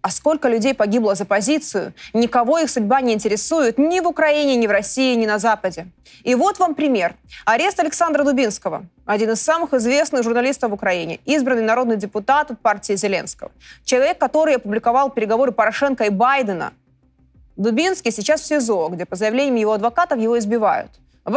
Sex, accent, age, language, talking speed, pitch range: female, native, 20-39, Russian, 165 wpm, 215-300 Hz